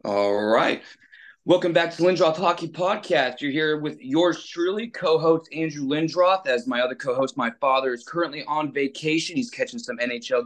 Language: English